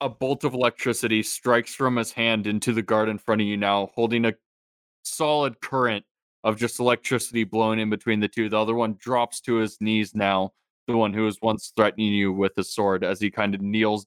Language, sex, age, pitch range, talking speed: English, male, 20-39, 100-115 Hz, 220 wpm